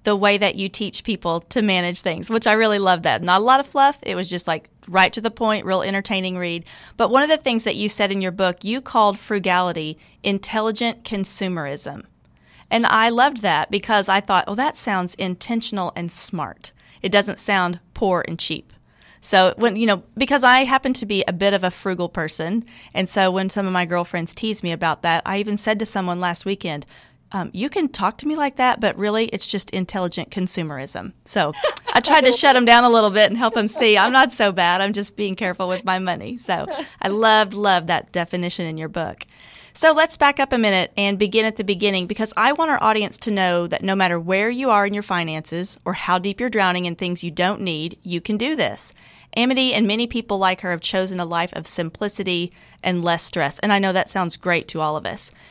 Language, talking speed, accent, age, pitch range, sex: English, 230 wpm, American, 30-49, 180-220 Hz, female